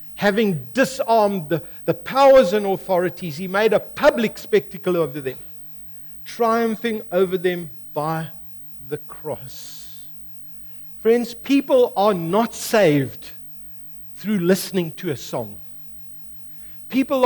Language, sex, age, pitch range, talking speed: English, male, 60-79, 165-235 Hz, 110 wpm